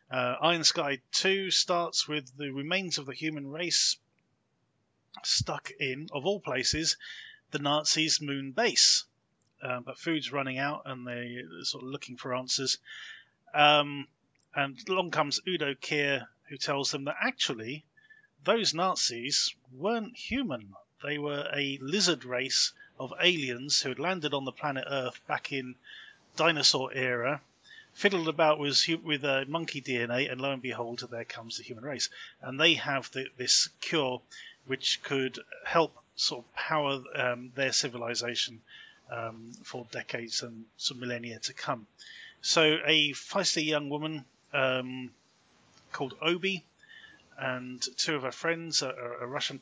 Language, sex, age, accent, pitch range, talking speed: English, male, 30-49, British, 130-160 Hz, 145 wpm